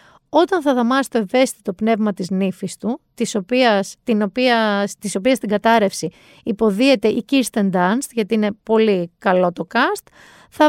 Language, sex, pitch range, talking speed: Greek, female, 215-305 Hz, 155 wpm